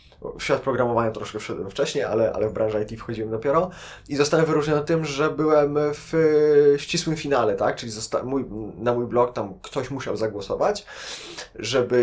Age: 20-39